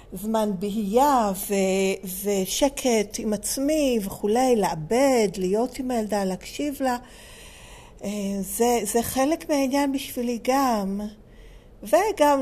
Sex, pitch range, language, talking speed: female, 190-250 Hz, Hebrew, 90 wpm